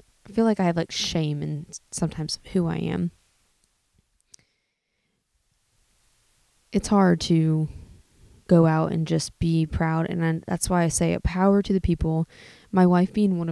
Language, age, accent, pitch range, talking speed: English, 20-39, American, 165-200 Hz, 160 wpm